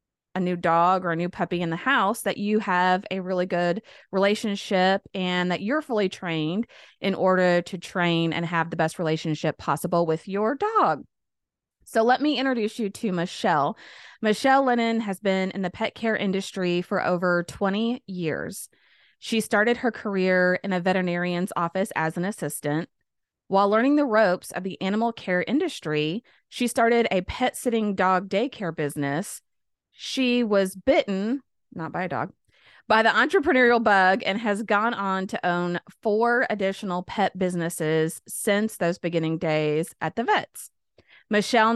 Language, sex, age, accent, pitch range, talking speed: English, female, 20-39, American, 175-220 Hz, 160 wpm